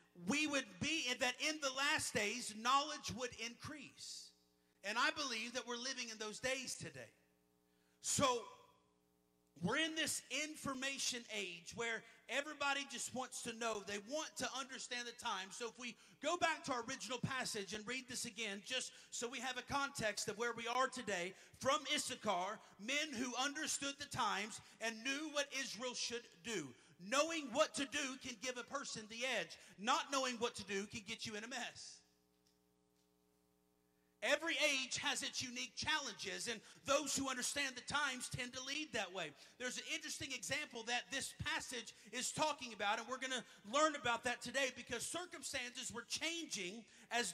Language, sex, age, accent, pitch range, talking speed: English, male, 40-59, American, 220-275 Hz, 175 wpm